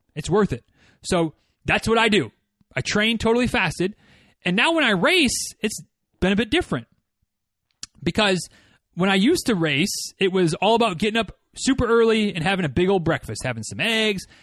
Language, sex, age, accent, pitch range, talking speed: English, male, 30-49, American, 155-225 Hz, 185 wpm